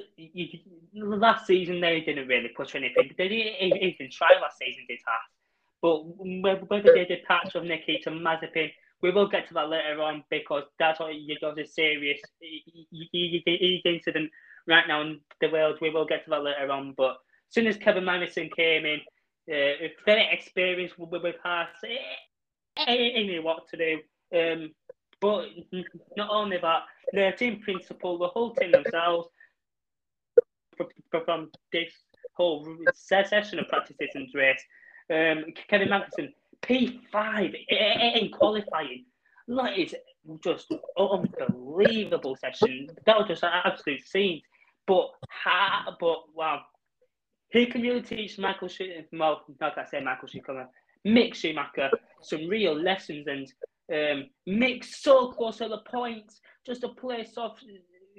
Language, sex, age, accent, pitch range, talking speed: English, male, 20-39, British, 160-215 Hz, 140 wpm